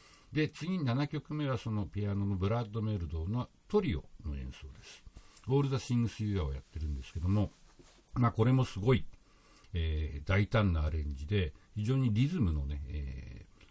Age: 60-79